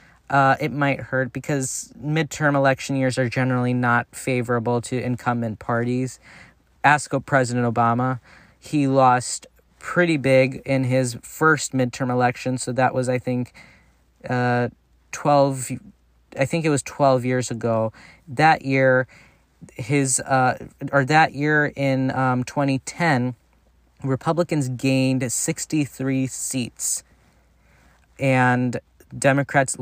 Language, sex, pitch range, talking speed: English, male, 125-140 Hz, 115 wpm